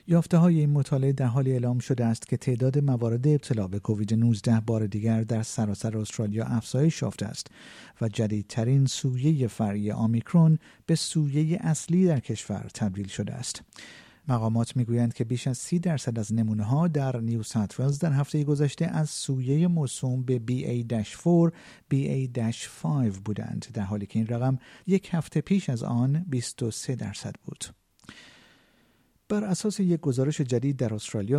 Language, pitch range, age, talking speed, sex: Persian, 115-150 Hz, 50-69, 150 wpm, male